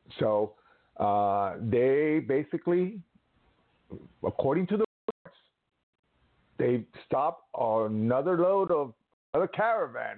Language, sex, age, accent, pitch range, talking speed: English, male, 50-69, American, 120-175 Hz, 90 wpm